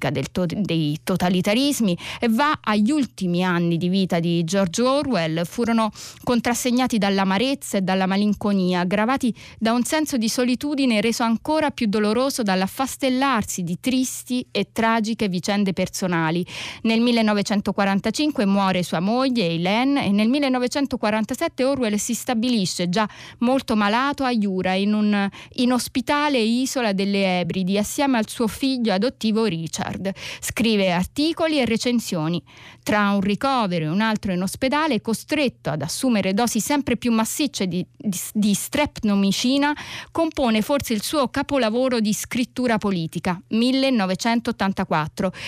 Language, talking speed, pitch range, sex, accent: Italian, 130 wpm, 195-255 Hz, female, native